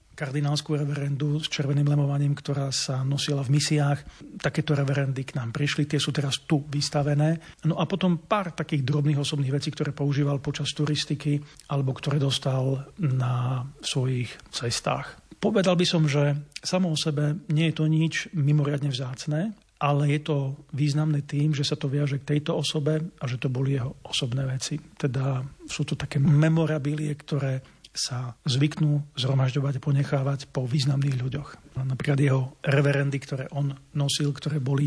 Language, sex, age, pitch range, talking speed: Slovak, male, 40-59, 140-150 Hz, 155 wpm